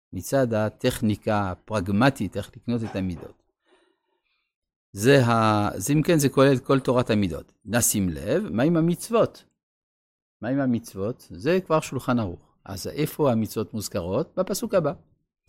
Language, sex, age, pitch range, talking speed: Hebrew, male, 50-69, 105-155 Hz, 135 wpm